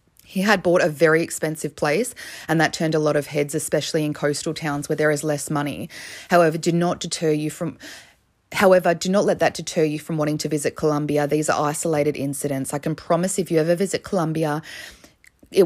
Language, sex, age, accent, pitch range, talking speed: English, female, 20-39, Australian, 145-160 Hz, 205 wpm